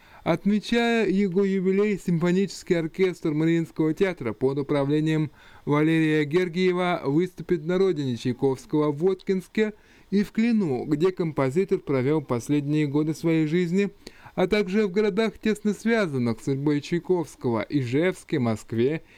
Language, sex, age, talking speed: Russian, male, 20-39, 120 wpm